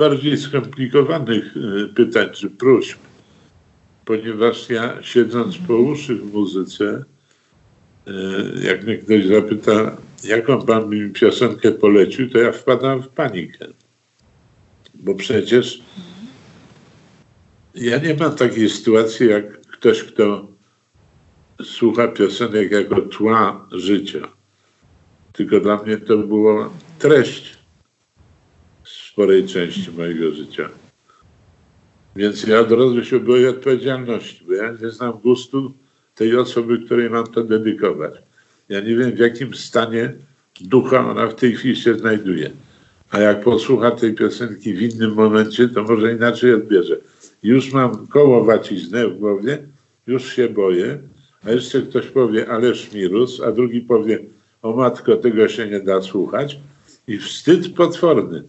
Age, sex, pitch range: 60-79, male, 105-125 Hz